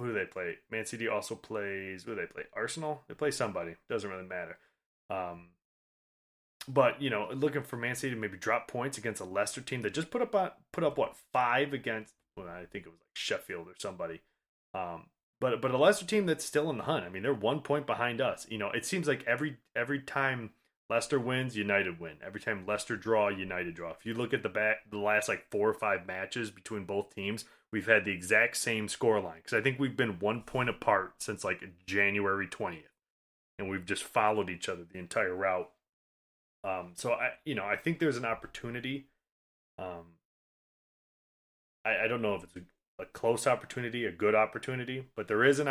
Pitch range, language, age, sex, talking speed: 100-135 Hz, English, 20-39, male, 210 wpm